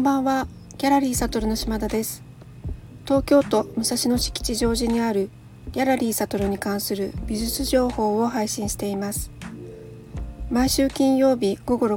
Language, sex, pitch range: Japanese, female, 190-240 Hz